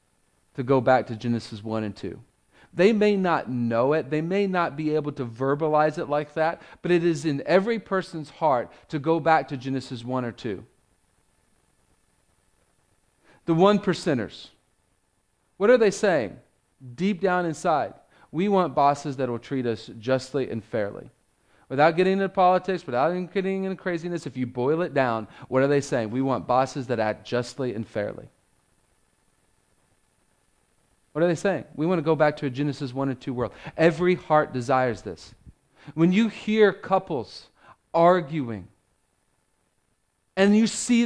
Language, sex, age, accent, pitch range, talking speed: English, male, 40-59, American, 125-175 Hz, 160 wpm